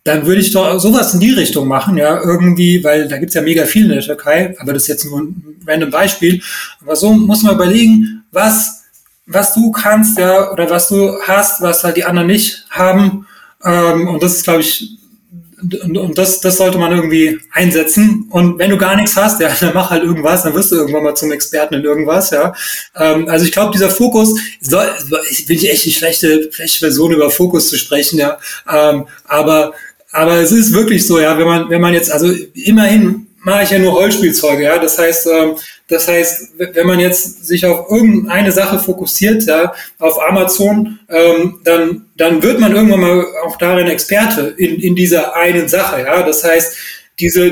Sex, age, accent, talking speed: male, 30-49, German, 195 wpm